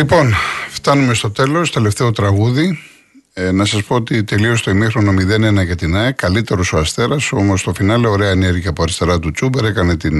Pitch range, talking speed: 90-115 Hz, 190 wpm